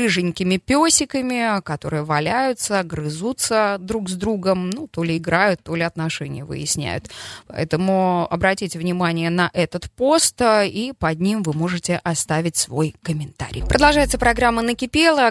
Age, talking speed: 20-39, 130 wpm